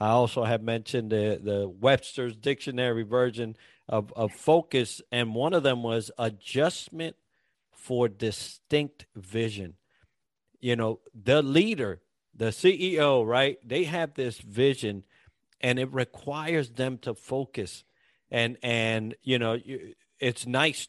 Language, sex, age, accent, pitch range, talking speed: English, male, 50-69, American, 110-130 Hz, 130 wpm